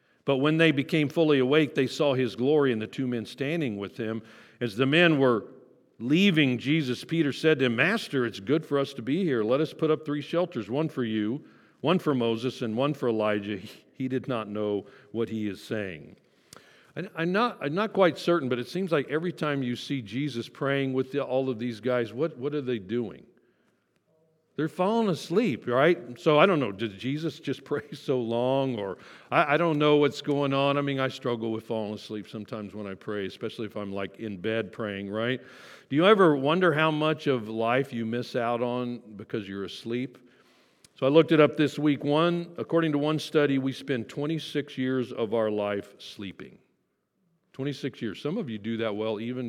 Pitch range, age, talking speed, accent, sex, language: 115-155 Hz, 50-69, 205 wpm, American, male, English